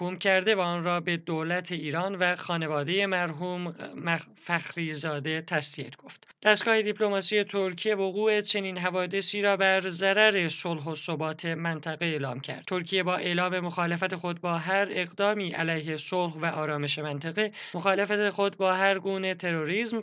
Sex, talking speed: male, 140 wpm